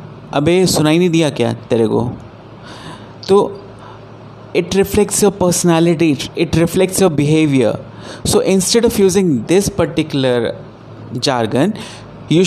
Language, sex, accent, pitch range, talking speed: Hindi, male, native, 120-170 Hz, 115 wpm